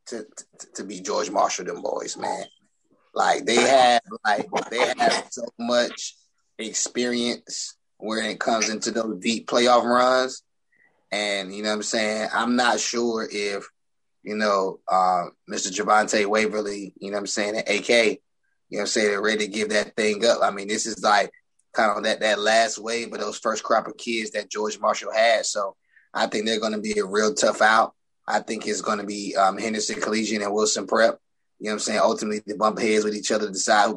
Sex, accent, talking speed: male, American, 210 wpm